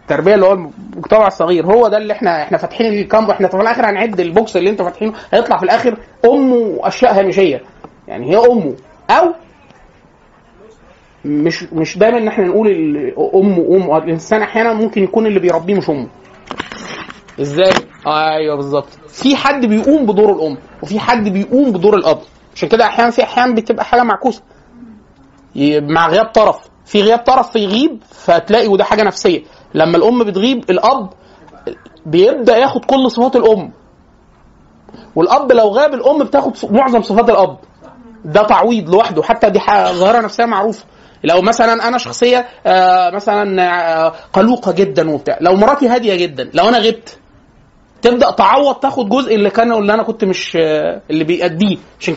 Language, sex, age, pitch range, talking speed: Arabic, male, 30-49, 185-235 Hz, 155 wpm